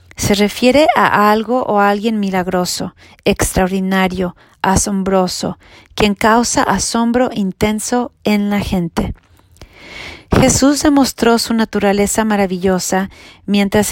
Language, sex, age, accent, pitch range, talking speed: English, female, 40-59, Mexican, 190-235 Hz, 100 wpm